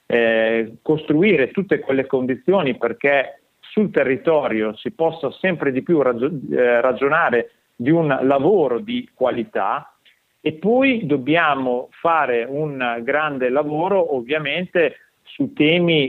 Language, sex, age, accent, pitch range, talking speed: Italian, male, 40-59, native, 120-155 Hz, 110 wpm